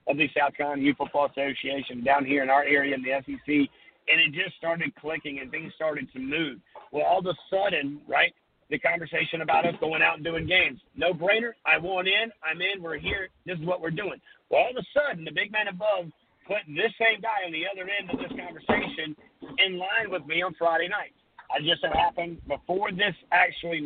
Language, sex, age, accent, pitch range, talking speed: English, male, 50-69, American, 150-195 Hz, 220 wpm